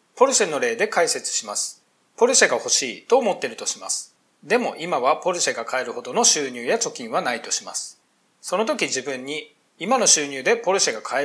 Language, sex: Japanese, male